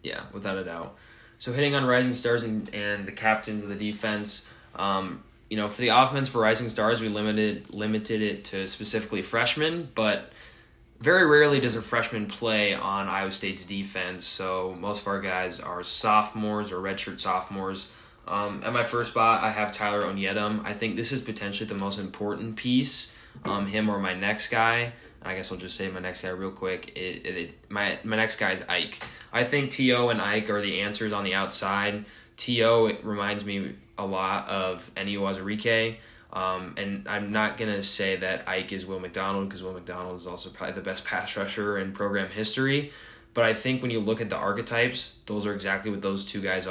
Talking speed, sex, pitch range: 200 wpm, male, 95-110 Hz